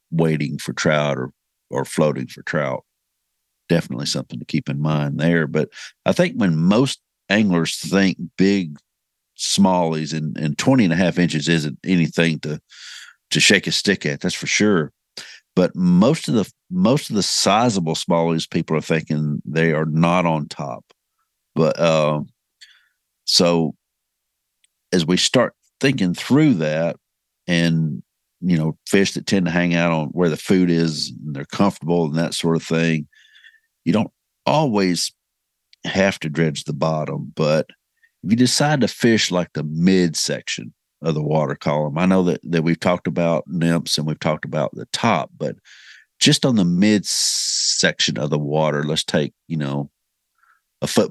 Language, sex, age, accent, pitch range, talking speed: English, male, 50-69, American, 75-90 Hz, 165 wpm